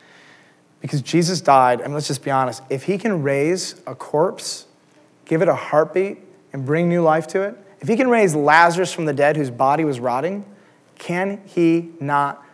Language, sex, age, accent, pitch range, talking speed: English, male, 30-49, American, 145-190 Hz, 185 wpm